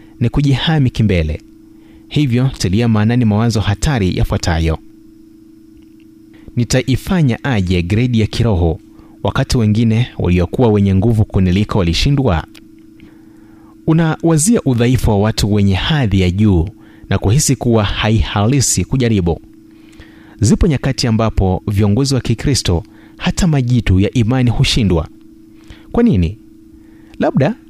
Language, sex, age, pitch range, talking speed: Swahili, male, 30-49, 105-135 Hz, 105 wpm